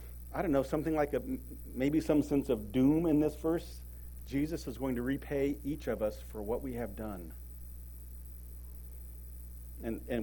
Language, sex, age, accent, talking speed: English, male, 40-59, American, 170 wpm